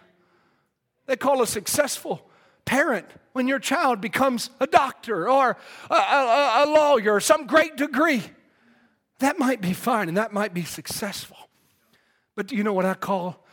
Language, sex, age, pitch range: English, male, 40-59, 185-300 Hz